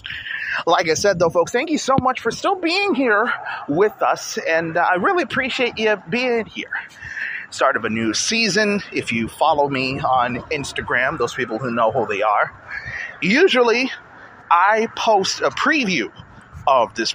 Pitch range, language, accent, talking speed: 150-240 Hz, English, American, 170 wpm